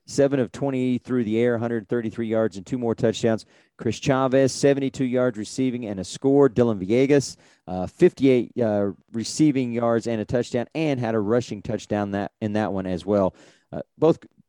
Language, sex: English, male